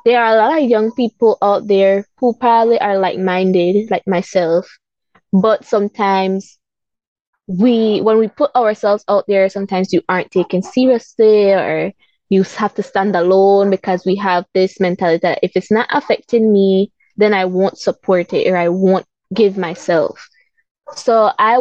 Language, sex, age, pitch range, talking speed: English, female, 20-39, 185-220 Hz, 165 wpm